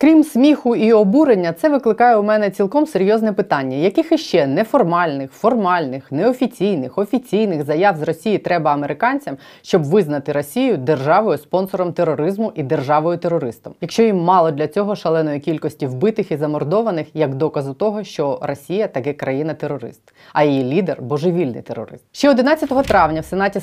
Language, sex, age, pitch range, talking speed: Ukrainian, female, 20-39, 160-215 Hz, 140 wpm